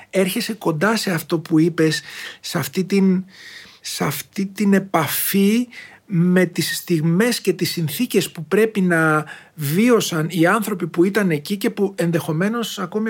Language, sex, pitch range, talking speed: Greek, male, 160-195 Hz, 135 wpm